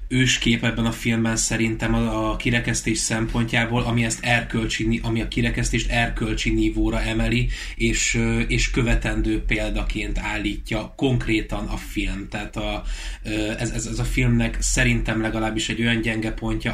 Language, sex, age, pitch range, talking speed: Hungarian, male, 20-39, 110-120 Hz, 135 wpm